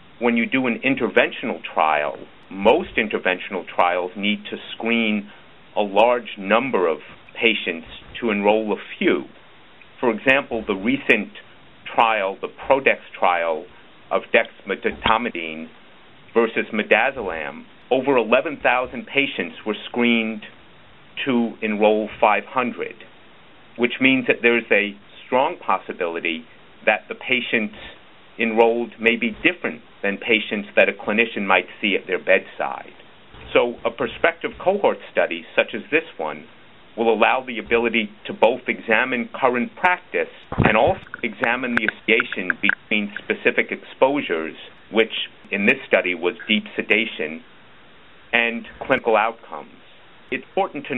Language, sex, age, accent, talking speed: English, male, 50-69, American, 125 wpm